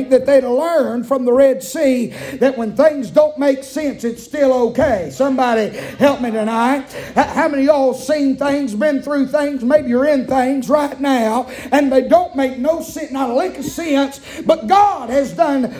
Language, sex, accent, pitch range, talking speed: English, male, American, 265-315 Hz, 195 wpm